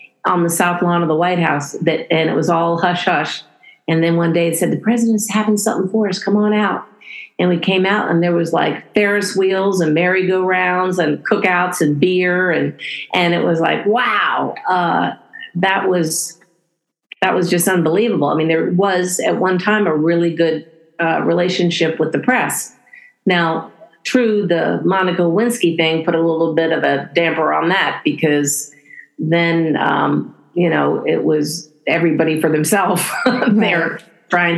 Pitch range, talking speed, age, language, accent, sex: 160-190 Hz, 175 wpm, 50-69, English, American, female